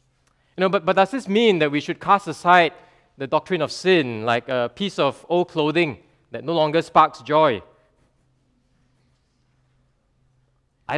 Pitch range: 140-195 Hz